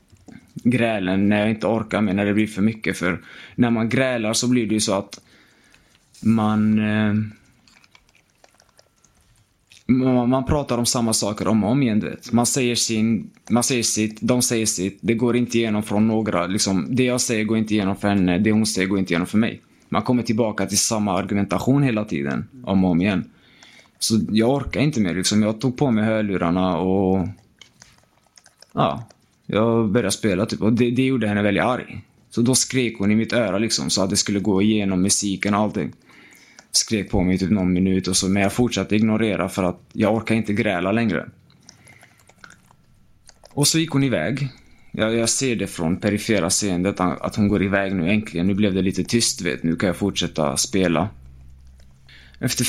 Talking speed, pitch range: 190 wpm, 95-115 Hz